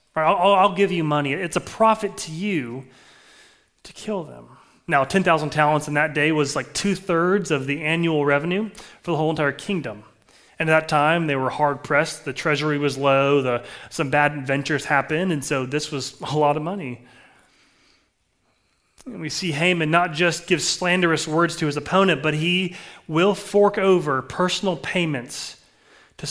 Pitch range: 145-180 Hz